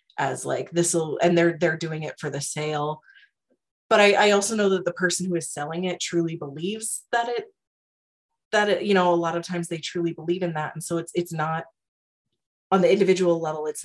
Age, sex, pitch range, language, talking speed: 30-49, female, 150-180 Hz, English, 220 wpm